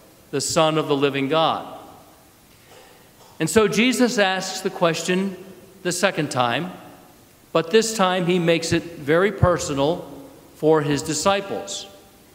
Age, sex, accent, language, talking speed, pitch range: 50-69, male, American, English, 125 wpm, 155-195 Hz